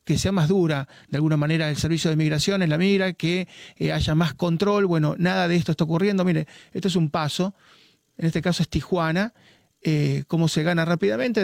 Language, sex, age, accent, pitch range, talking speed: Spanish, male, 30-49, Argentinian, 155-190 Hz, 210 wpm